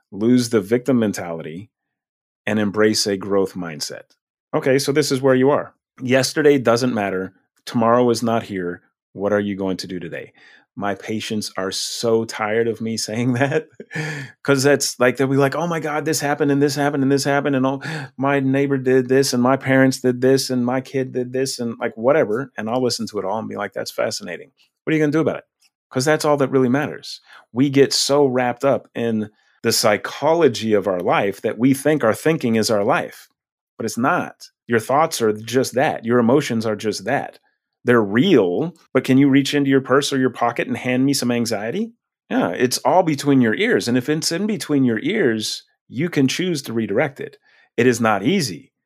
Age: 30-49